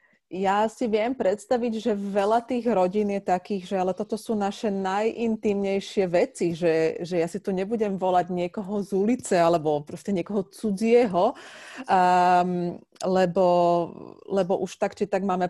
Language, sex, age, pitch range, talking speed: Slovak, female, 30-49, 170-210 Hz, 150 wpm